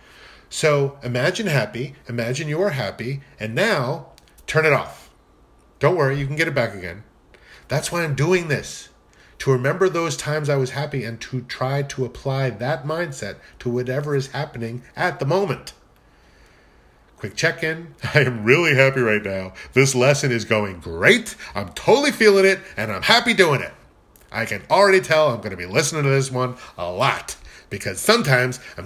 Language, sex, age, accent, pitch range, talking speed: English, male, 40-59, American, 115-155 Hz, 175 wpm